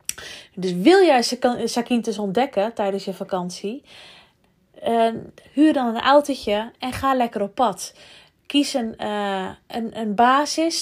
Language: Dutch